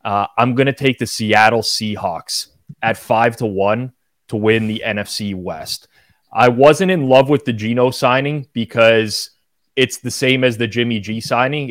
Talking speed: 175 wpm